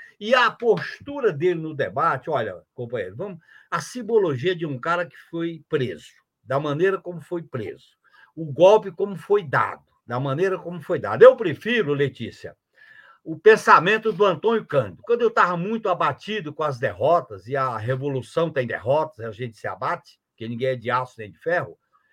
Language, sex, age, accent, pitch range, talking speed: Portuguese, male, 60-79, Brazilian, 155-215 Hz, 175 wpm